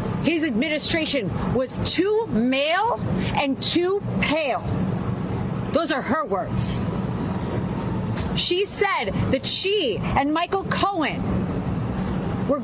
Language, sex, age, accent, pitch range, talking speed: English, female, 40-59, American, 225-300 Hz, 95 wpm